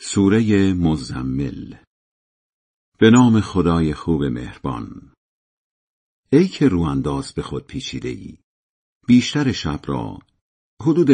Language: Persian